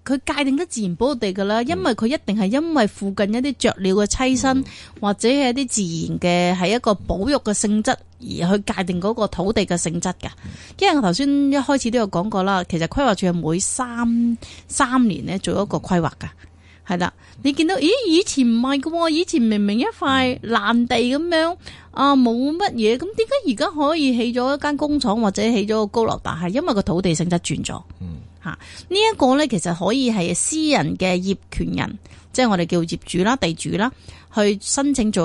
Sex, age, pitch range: female, 30-49, 185-260 Hz